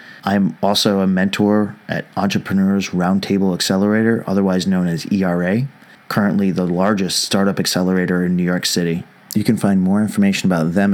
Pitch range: 95-110 Hz